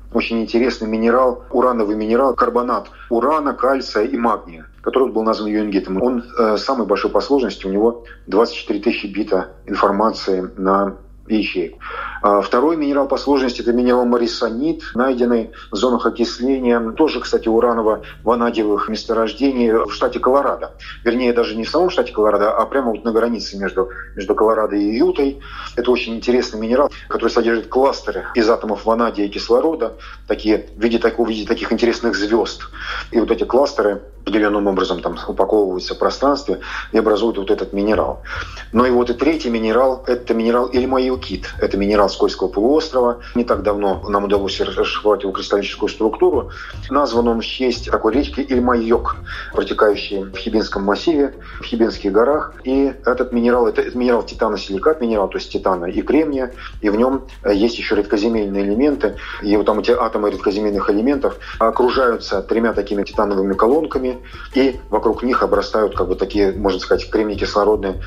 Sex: male